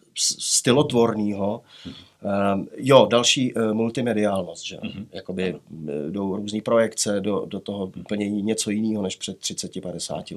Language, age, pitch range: Czech, 30-49, 105-130 Hz